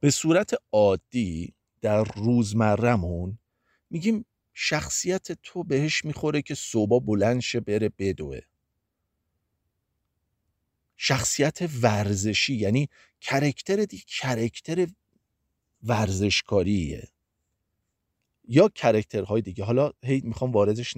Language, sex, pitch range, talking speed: Persian, male, 95-125 Hz, 85 wpm